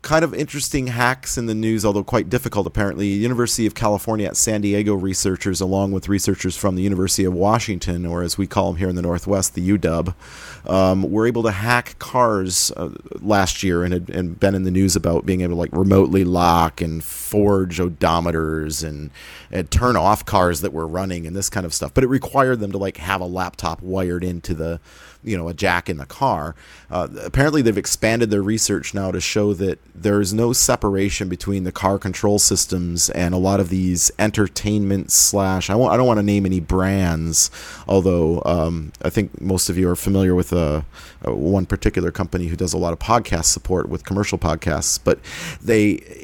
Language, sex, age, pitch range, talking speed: English, male, 30-49, 90-105 Hz, 200 wpm